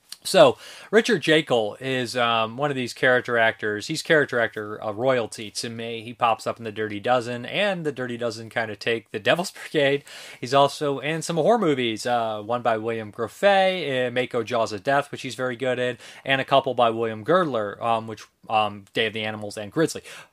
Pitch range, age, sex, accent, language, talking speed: 115-150 Hz, 30-49, male, American, English, 205 wpm